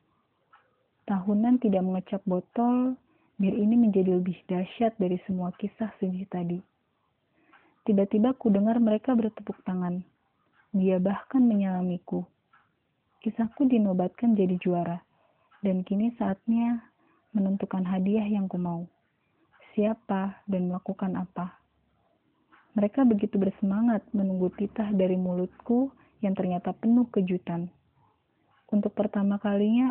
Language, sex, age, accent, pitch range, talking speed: Indonesian, female, 30-49, native, 185-220 Hz, 105 wpm